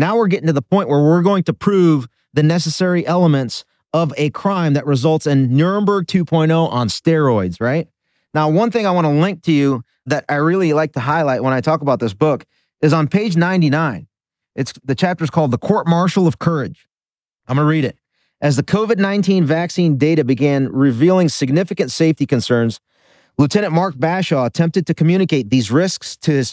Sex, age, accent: male, 30-49, American